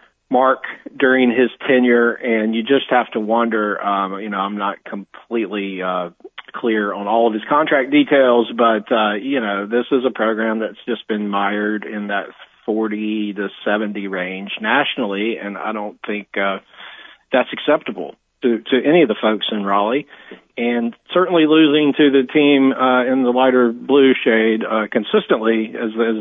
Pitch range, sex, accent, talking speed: 105-120 Hz, male, American, 170 wpm